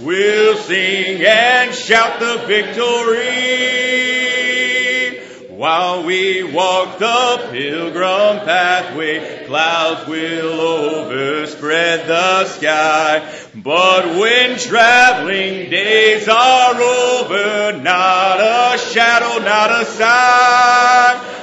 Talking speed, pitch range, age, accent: 80 wpm, 185-250 Hz, 40-59, American